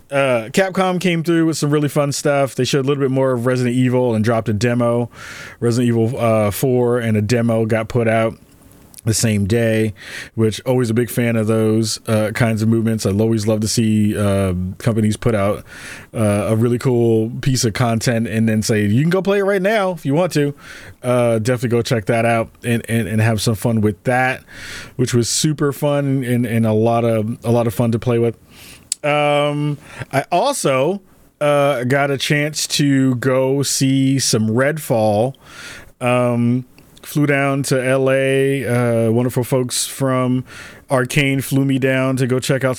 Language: English